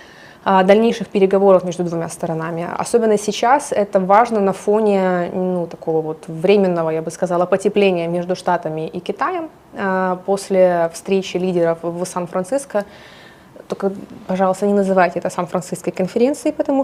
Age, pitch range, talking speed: 20-39, 175-200 Hz, 130 wpm